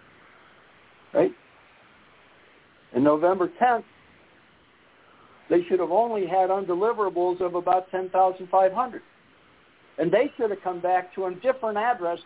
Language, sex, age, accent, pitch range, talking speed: English, male, 60-79, American, 175-215 Hz, 125 wpm